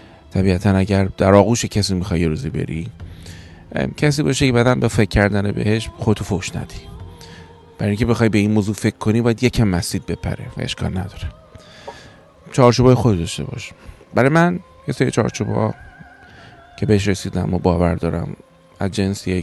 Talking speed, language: 160 wpm, Persian